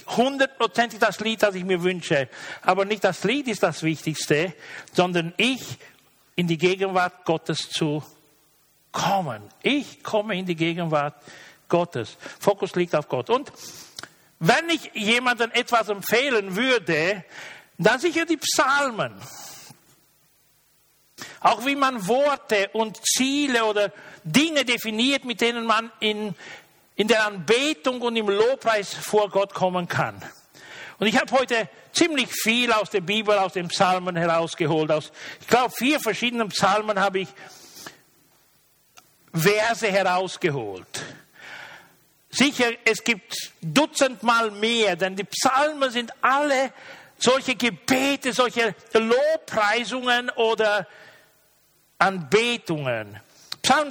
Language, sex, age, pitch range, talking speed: German, male, 60-79, 185-245 Hz, 120 wpm